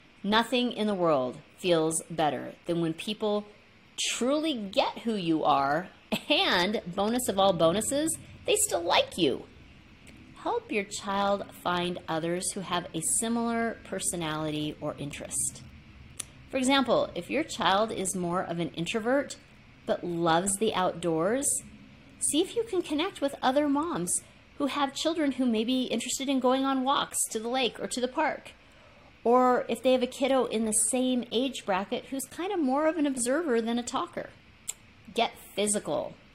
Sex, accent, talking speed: female, American, 160 wpm